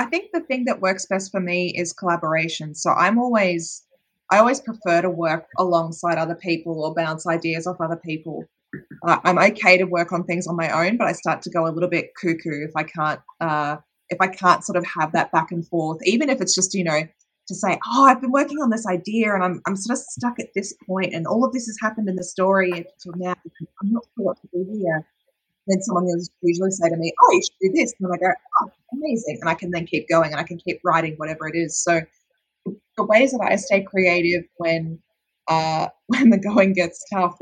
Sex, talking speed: female, 240 wpm